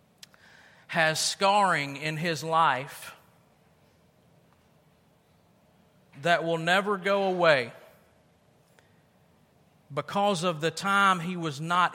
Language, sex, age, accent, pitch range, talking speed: English, male, 40-59, American, 155-195 Hz, 85 wpm